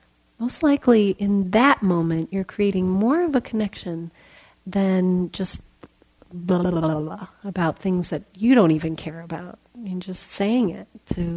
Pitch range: 170-200 Hz